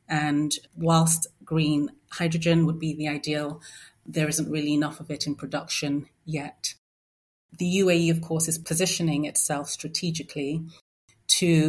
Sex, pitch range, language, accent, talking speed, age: female, 145-160 Hz, English, British, 135 wpm, 30-49